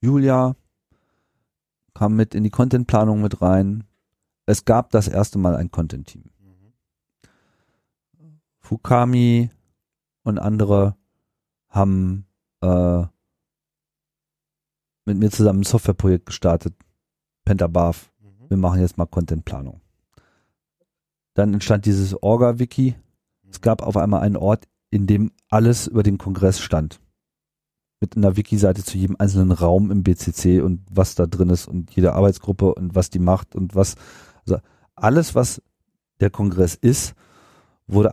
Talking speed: 125 wpm